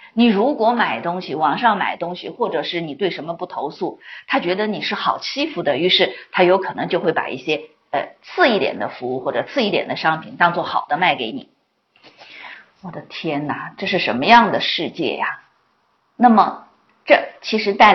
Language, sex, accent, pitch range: Chinese, female, native, 180-280 Hz